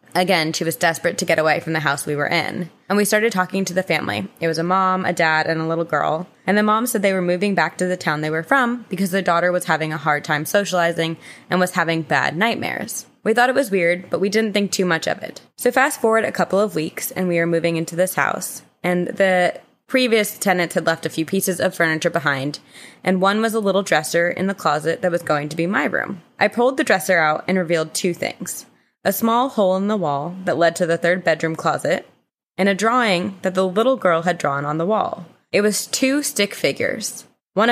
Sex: female